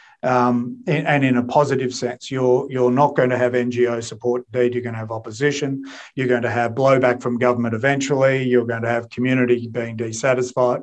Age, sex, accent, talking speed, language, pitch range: 40-59, male, Australian, 195 wpm, English, 120-135 Hz